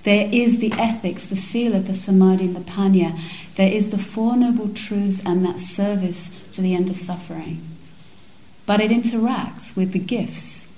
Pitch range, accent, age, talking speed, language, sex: 180-215 Hz, British, 40-59, 180 wpm, English, female